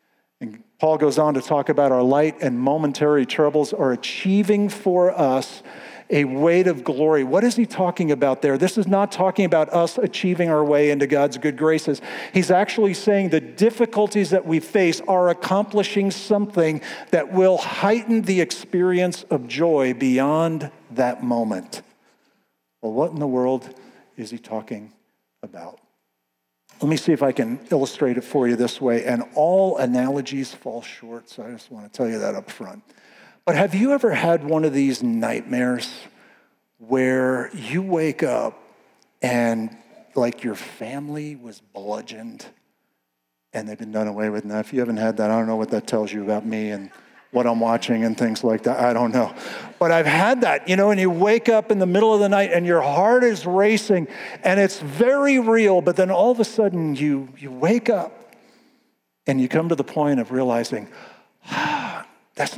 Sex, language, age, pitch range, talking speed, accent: male, English, 50-69, 120-190 Hz, 185 wpm, American